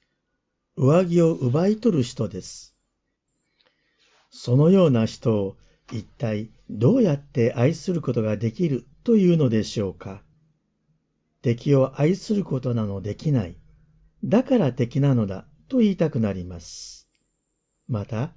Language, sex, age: Japanese, male, 50-69